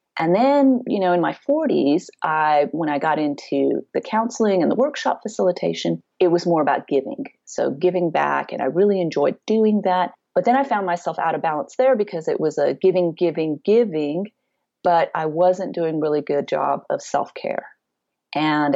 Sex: female